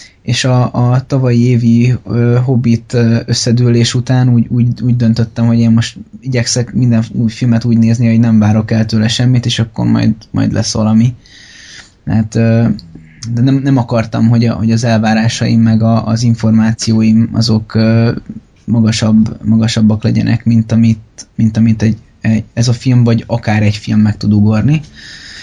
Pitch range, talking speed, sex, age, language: 110-120 Hz, 170 wpm, male, 20-39, Hungarian